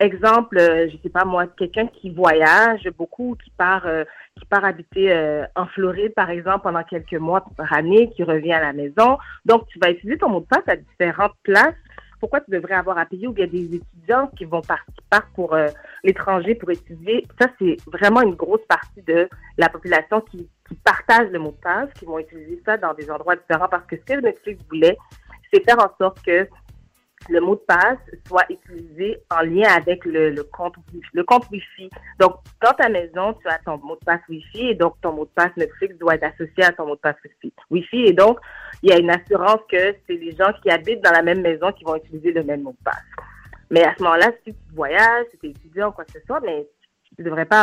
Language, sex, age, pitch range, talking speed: French, female, 40-59, 165-220 Hz, 235 wpm